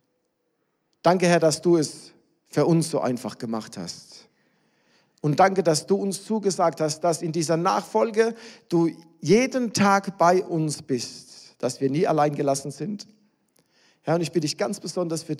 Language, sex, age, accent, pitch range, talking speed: German, male, 50-69, German, 145-190 Hz, 165 wpm